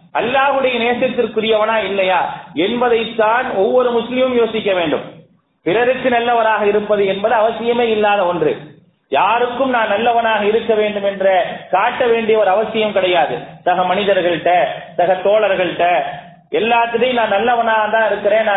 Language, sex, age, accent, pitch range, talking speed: English, male, 30-49, Indian, 195-245 Hz, 150 wpm